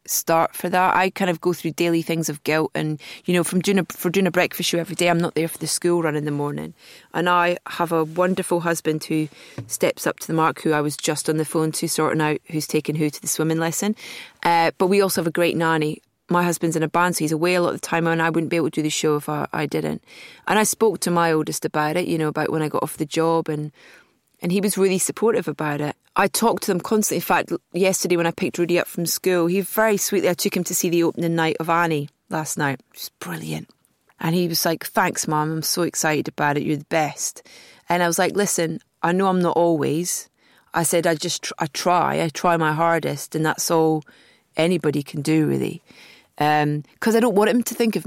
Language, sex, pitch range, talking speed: English, female, 155-180 Hz, 255 wpm